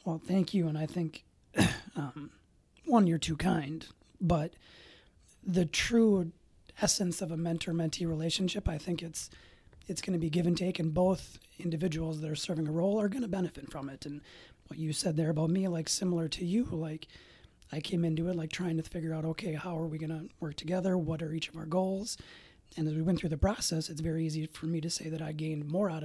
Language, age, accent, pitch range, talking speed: English, 30-49, American, 155-180 Hz, 220 wpm